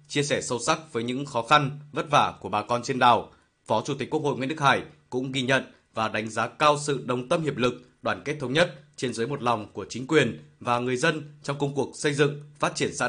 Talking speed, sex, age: 260 wpm, male, 20-39